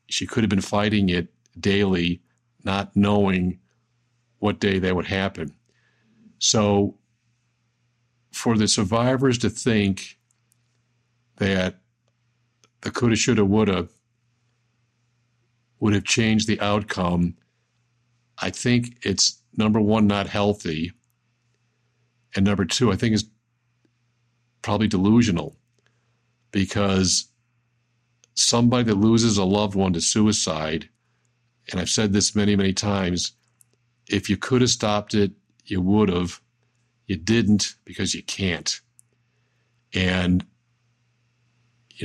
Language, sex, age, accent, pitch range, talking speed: English, male, 50-69, American, 100-120 Hz, 110 wpm